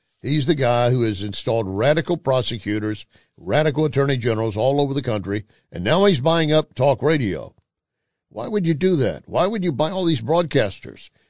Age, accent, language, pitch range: 60-79, American, English, 110-150 Hz